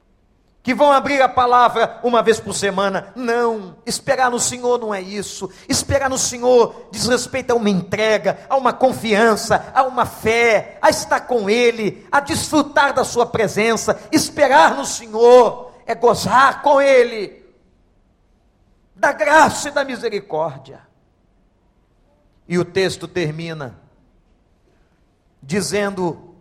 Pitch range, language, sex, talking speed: 170-240 Hz, Portuguese, male, 125 wpm